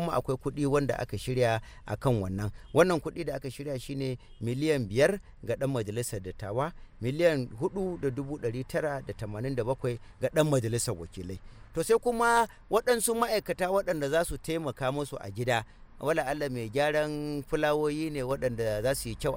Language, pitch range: English, 110-150 Hz